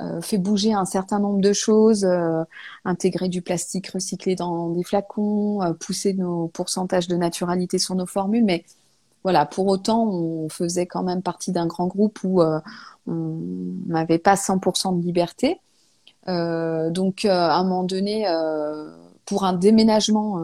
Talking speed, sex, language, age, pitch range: 165 wpm, female, French, 30-49, 165-200 Hz